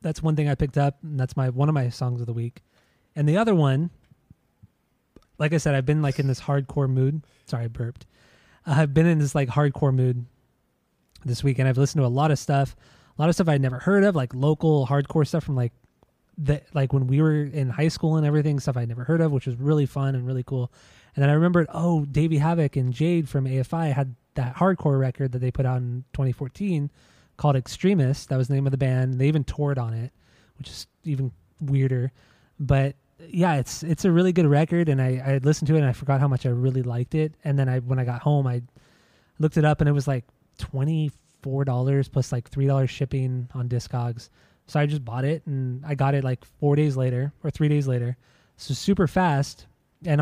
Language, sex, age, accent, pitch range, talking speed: English, male, 20-39, American, 130-150 Hz, 235 wpm